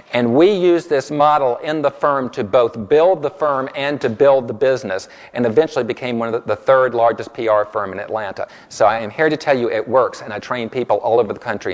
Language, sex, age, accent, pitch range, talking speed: English, male, 50-69, American, 135-200 Hz, 245 wpm